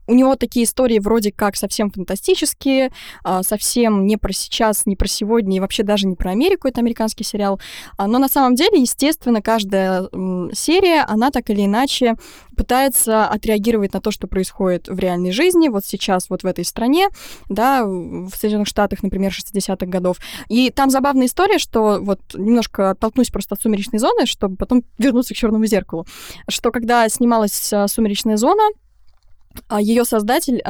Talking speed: 160 wpm